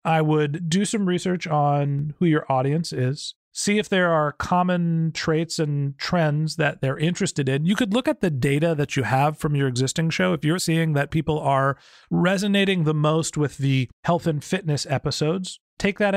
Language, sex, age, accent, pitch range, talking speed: English, male, 40-59, American, 140-165 Hz, 195 wpm